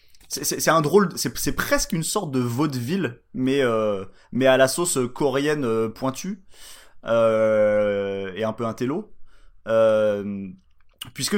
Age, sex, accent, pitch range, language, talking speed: 20-39, male, French, 100-145 Hz, French, 150 wpm